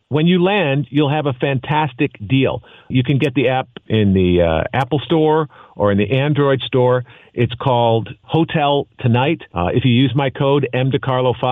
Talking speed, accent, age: 175 wpm, American, 50-69